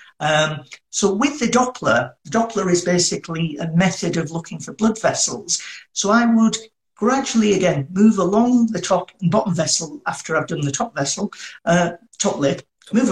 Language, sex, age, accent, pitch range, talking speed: English, male, 50-69, British, 160-205 Hz, 170 wpm